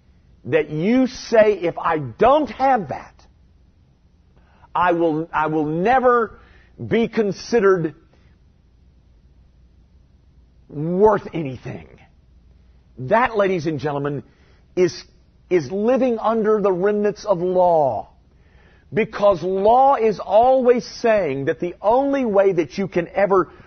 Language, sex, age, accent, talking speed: English, male, 50-69, American, 105 wpm